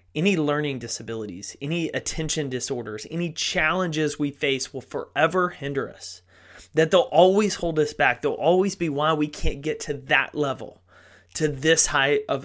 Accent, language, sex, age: American, English, male, 30-49